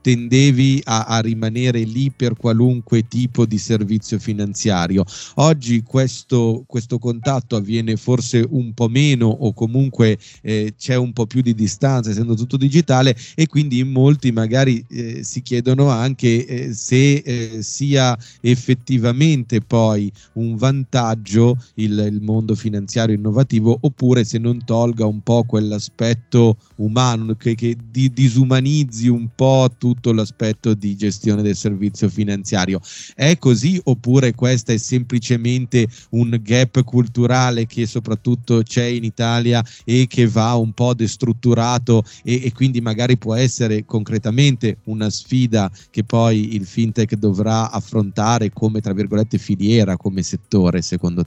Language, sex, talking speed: Italian, male, 135 wpm